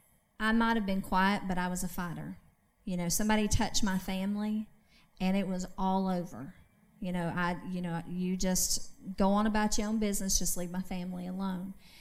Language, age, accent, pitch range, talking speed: English, 40-59, American, 185-215 Hz, 195 wpm